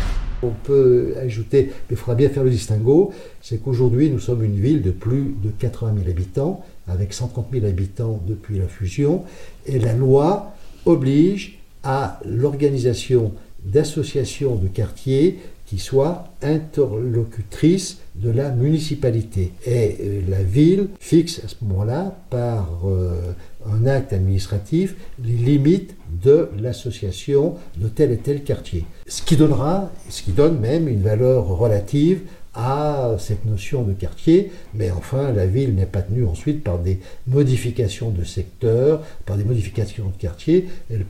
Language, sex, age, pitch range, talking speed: French, male, 60-79, 100-140 Hz, 145 wpm